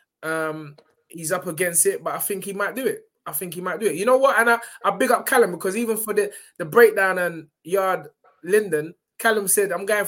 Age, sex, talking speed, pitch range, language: 20-39, male, 240 wpm, 160-230 Hz, English